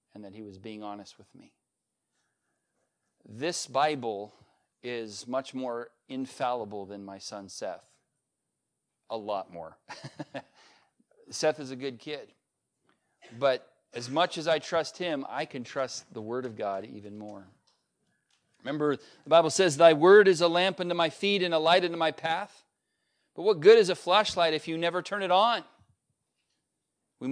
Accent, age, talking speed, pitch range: American, 40-59, 160 wpm, 130-165 Hz